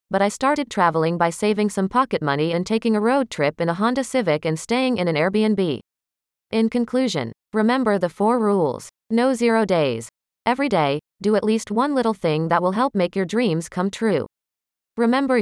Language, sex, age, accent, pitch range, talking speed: Hindi, female, 30-49, American, 170-230 Hz, 190 wpm